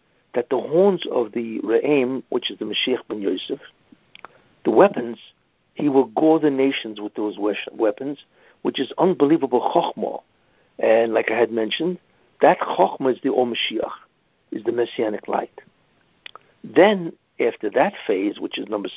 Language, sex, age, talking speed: English, male, 60-79, 155 wpm